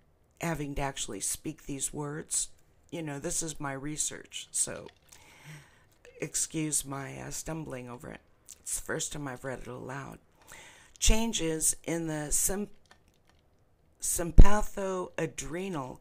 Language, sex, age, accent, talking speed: English, female, 50-69, American, 115 wpm